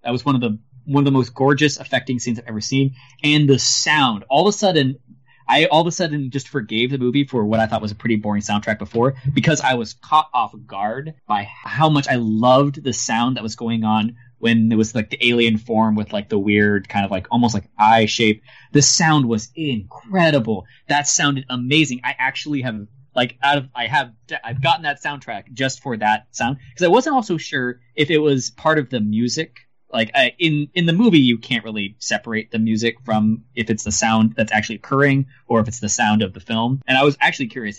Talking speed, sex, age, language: 225 wpm, male, 20-39, English